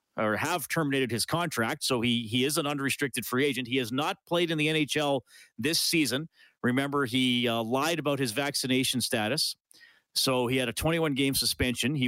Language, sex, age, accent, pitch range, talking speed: English, male, 40-59, American, 120-145 Hz, 185 wpm